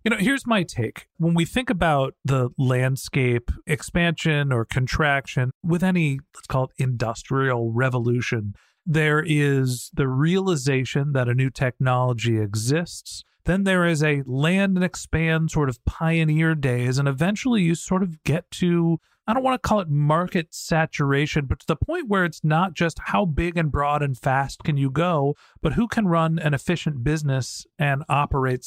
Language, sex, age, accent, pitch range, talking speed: English, male, 40-59, American, 130-170 Hz, 170 wpm